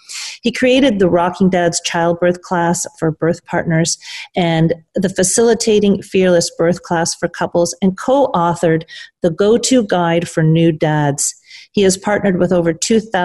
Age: 40-59